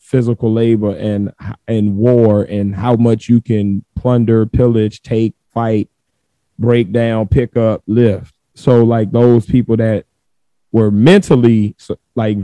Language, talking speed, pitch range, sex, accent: English, 130 wpm, 110-130 Hz, male, American